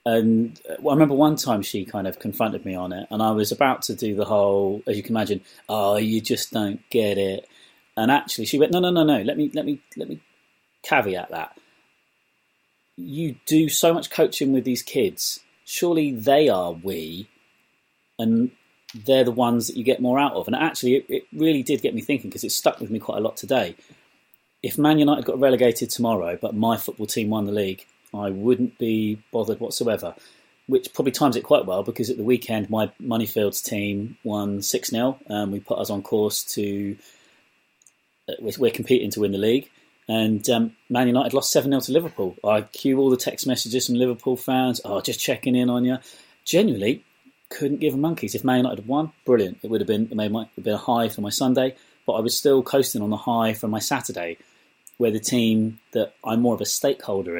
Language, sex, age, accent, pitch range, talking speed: English, male, 30-49, British, 105-135 Hz, 205 wpm